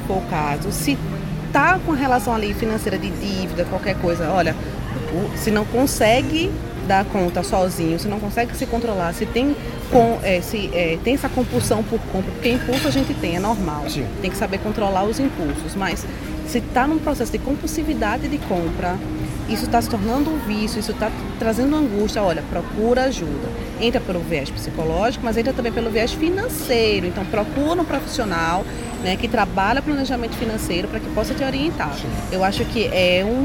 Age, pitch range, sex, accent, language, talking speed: 20-39, 175-240 Hz, female, Brazilian, Portuguese, 180 wpm